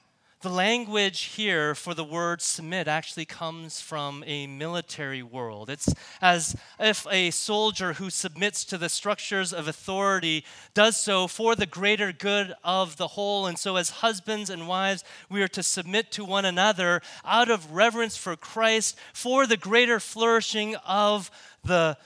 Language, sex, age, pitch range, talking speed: English, male, 30-49, 185-230 Hz, 160 wpm